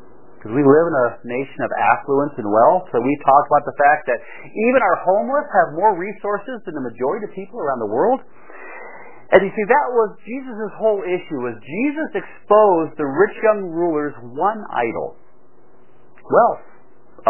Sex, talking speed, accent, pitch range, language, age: male, 170 wpm, American, 150-250 Hz, English, 40-59